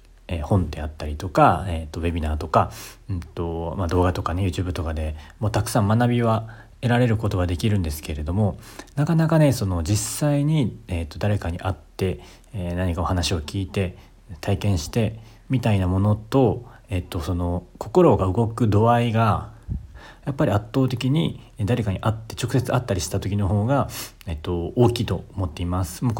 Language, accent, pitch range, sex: Japanese, native, 90-120 Hz, male